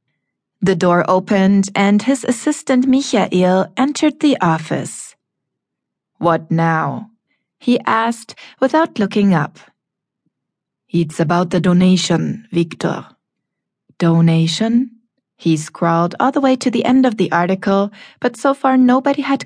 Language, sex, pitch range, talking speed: English, female, 175-245 Hz, 120 wpm